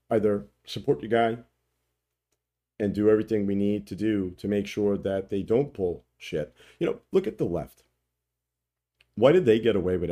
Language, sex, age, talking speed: English, male, 50-69, 185 wpm